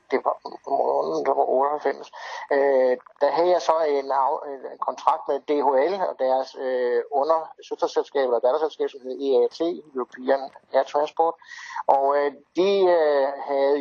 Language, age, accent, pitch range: Danish, 60-79, native, 135-210 Hz